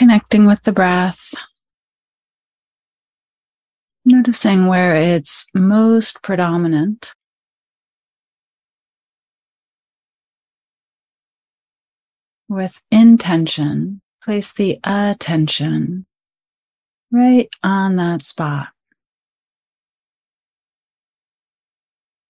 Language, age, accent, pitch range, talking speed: English, 40-59, American, 170-215 Hz, 50 wpm